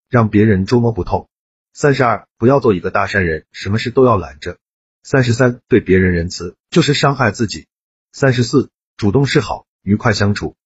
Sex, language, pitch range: male, Chinese, 95-130 Hz